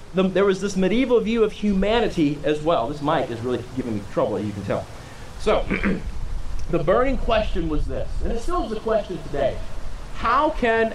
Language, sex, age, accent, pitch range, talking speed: English, male, 30-49, American, 150-215 Hz, 185 wpm